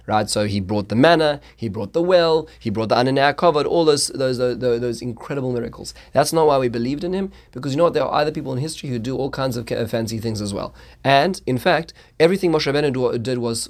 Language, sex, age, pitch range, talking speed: English, male, 30-49, 110-135 Hz, 245 wpm